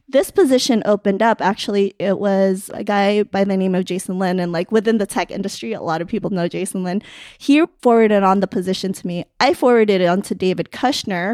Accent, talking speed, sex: American, 220 wpm, female